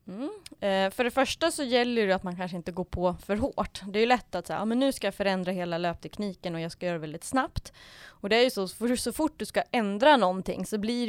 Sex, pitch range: female, 180-230 Hz